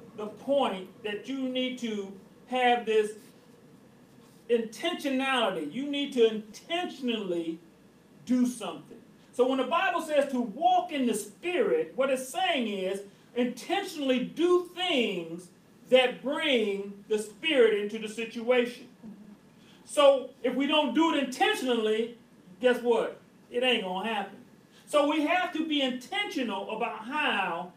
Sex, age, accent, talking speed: male, 40-59, American, 130 wpm